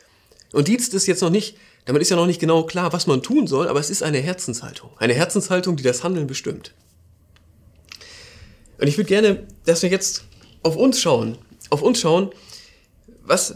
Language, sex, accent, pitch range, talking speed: German, male, German, 125-185 Hz, 185 wpm